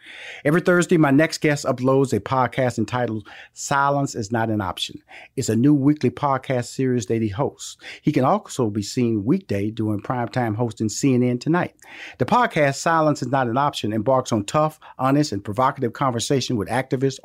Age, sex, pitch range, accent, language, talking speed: 40-59, male, 120-150 Hz, American, English, 175 wpm